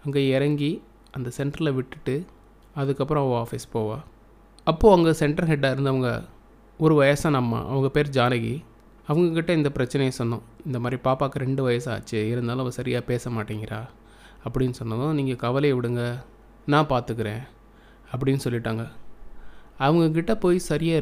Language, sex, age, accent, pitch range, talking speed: Tamil, male, 20-39, native, 120-150 Hz, 130 wpm